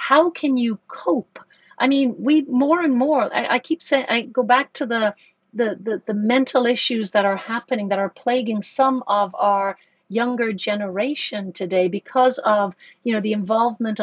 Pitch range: 200-255 Hz